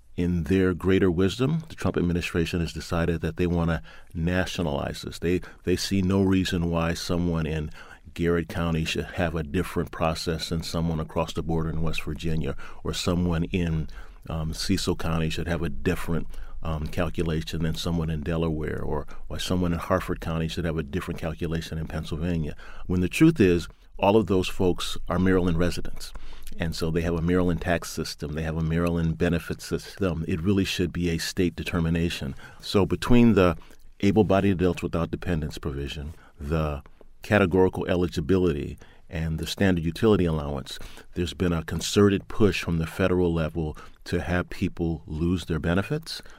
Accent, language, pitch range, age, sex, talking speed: American, English, 80-90 Hz, 40-59, male, 170 wpm